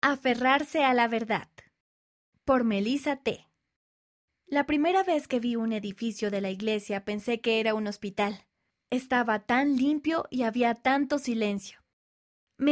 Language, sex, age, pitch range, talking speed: Spanish, female, 20-39, 210-265 Hz, 140 wpm